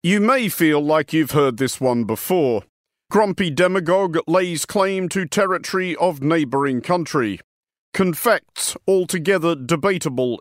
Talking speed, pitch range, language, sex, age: 120 wpm, 135-185 Hz, English, male, 50-69